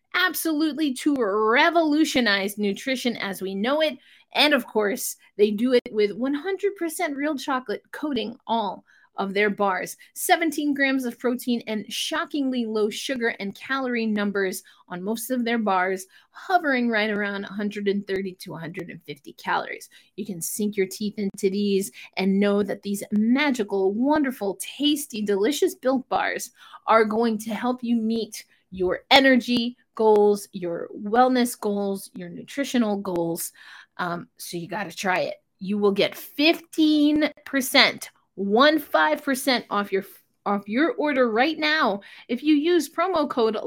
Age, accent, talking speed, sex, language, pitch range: 30-49, American, 145 wpm, female, English, 205-300 Hz